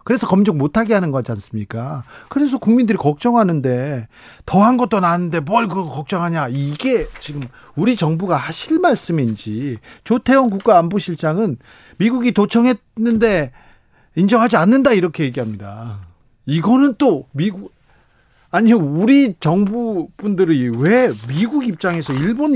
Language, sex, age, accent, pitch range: Korean, male, 40-59, native, 145-220 Hz